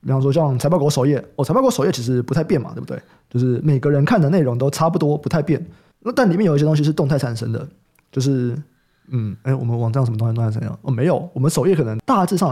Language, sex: Chinese, male